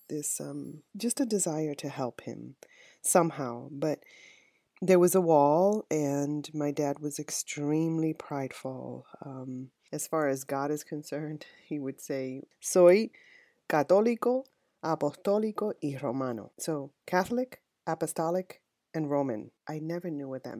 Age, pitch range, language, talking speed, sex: 30-49, 130-165 Hz, English, 130 wpm, female